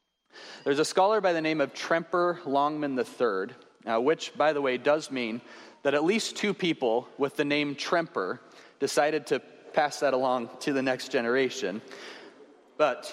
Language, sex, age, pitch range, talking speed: English, male, 30-49, 135-195 Hz, 160 wpm